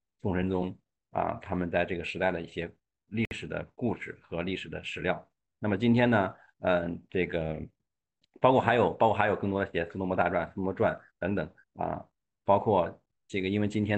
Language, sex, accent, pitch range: Chinese, male, native, 85-110 Hz